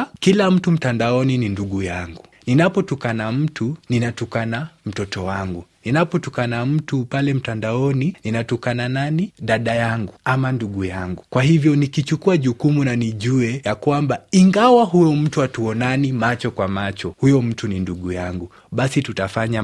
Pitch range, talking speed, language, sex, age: 100-140 Hz, 135 wpm, Swahili, male, 30-49